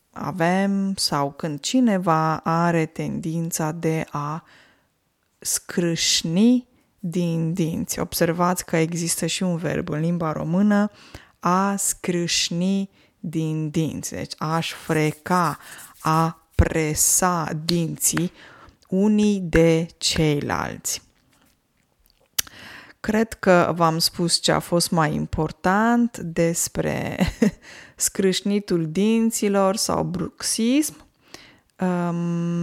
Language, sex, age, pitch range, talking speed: Romanian, female, 20-39, 160-205 Hz, 85 wpm